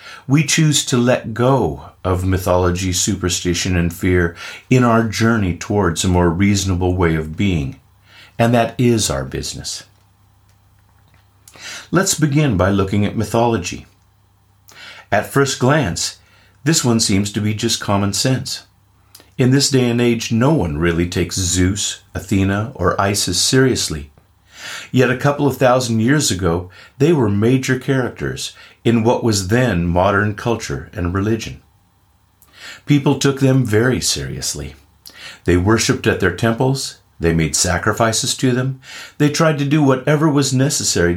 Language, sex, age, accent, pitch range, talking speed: English, male, 50-69, American, 90-125 Hz, 140 wpm